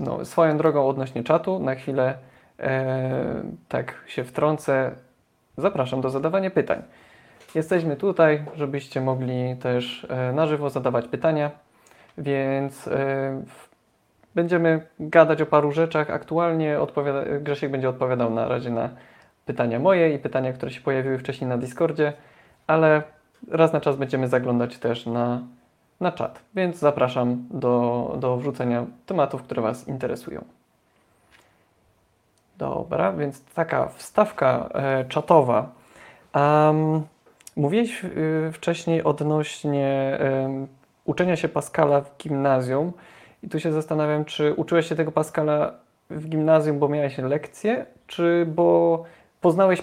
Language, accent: Polish, native